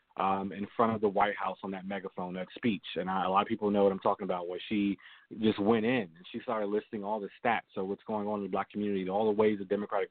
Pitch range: 95-115 Hz